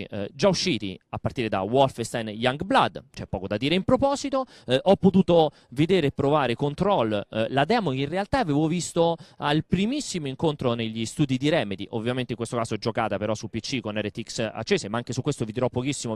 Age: 30-49